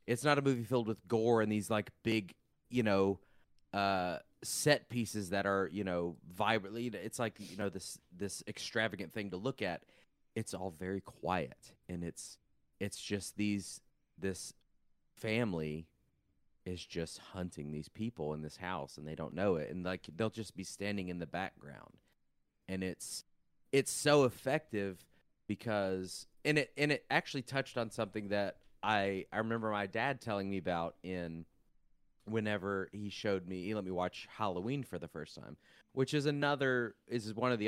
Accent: American